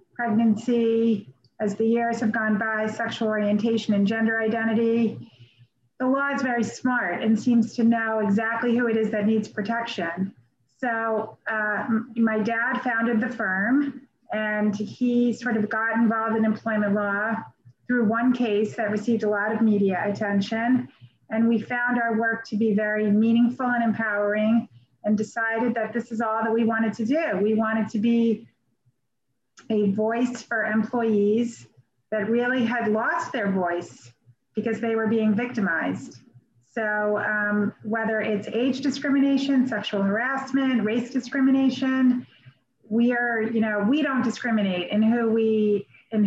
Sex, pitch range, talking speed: female, 210-235 Hz, 150 wpm